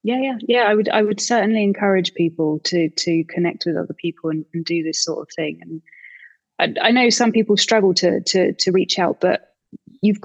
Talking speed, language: 215 wpm, English